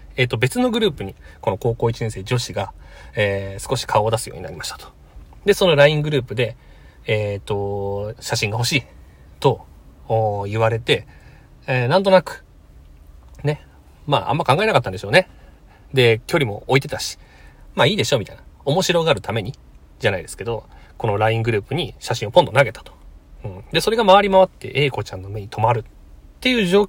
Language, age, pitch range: Japanese, 40-59, 90-135 Hz